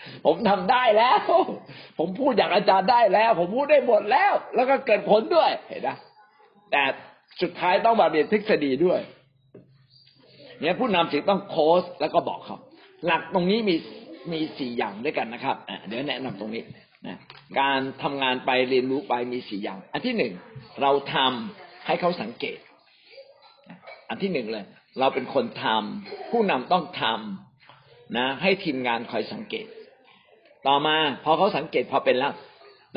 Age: 60-79